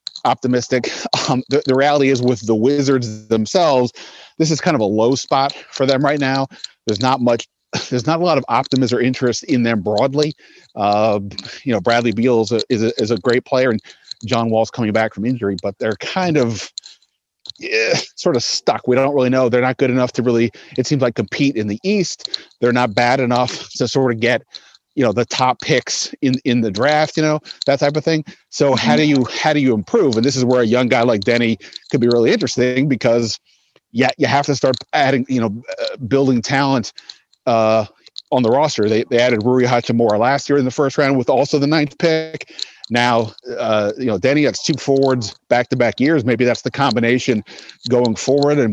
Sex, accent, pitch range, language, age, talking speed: male, American, 115-140 Hz, Hebrew, 30-49, 215 wpm